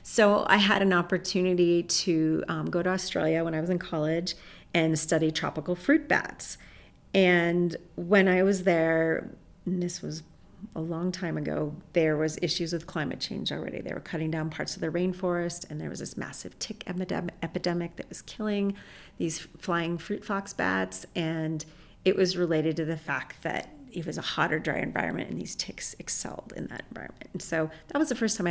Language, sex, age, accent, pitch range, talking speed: English, female, 40-59, American, 160-190 Hz, 190 wpm